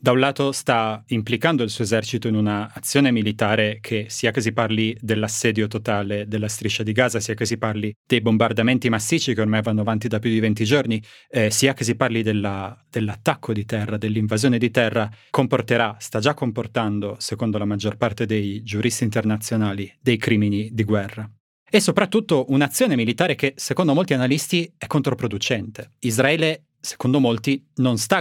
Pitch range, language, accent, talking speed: 110-130 Hz, Italian, native, 170 wpm